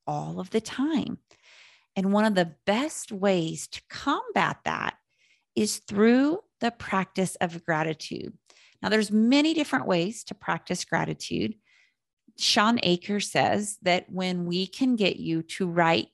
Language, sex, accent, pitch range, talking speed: English, female, American, 165-210 Hz, 140 wpm